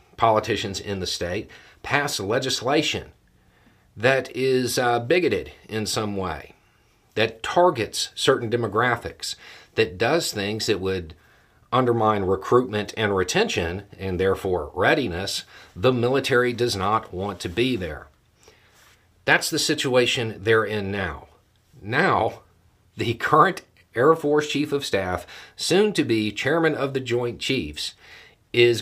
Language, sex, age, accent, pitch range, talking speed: English, male, 50-69, American, 85-120 Hz, 125 wpm